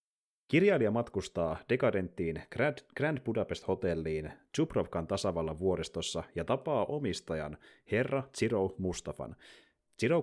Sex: male